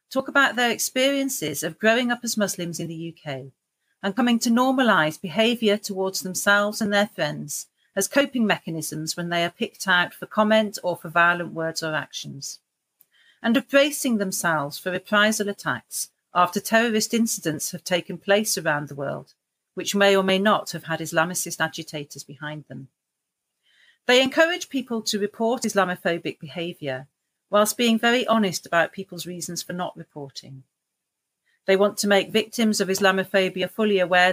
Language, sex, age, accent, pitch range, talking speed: English, female, 40-59, British, 165-215 Hz, 160 wpm